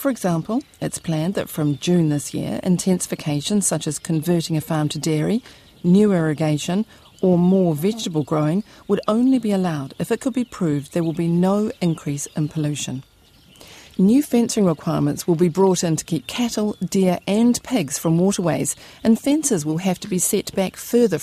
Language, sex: English, female